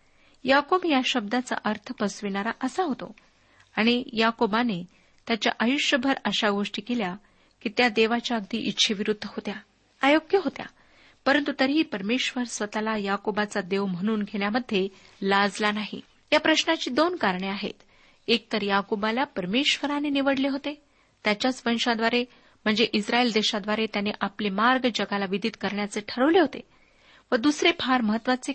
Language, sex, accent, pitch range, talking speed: Marathi, female, native, 210-255 Hz, 125 wpm